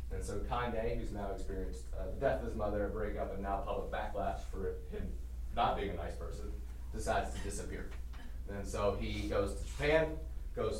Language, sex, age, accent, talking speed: English, male, 30-49, American, 195 wpm